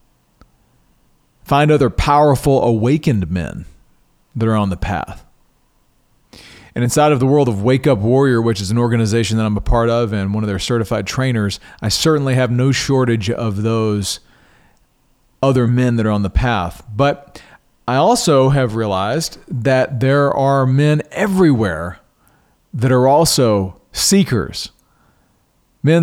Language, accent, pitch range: English, American, 115-145 Hz